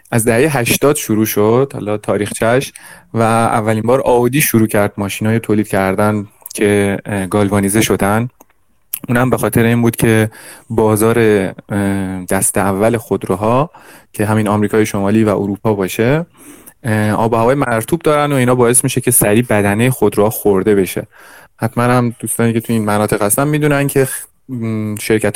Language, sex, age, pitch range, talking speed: Persian, male, 30-49, 105-125 Hz, 150 wpm